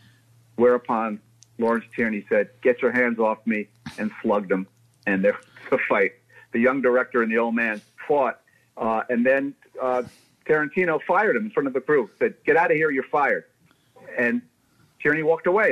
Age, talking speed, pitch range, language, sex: 50-69, 185 wpm, 120-175 Hz, English, male